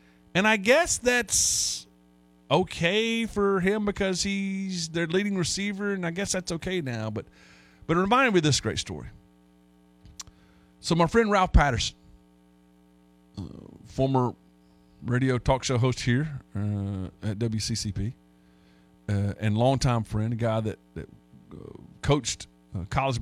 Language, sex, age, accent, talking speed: English, male, 40-59, American, 140 wpm